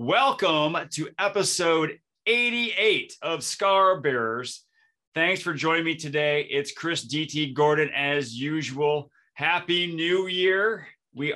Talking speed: 115 wpm